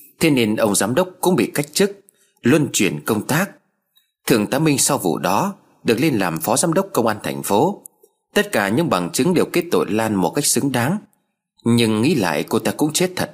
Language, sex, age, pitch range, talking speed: Vietnamese, male, 20-39, 110-180 Hz, 225 wpm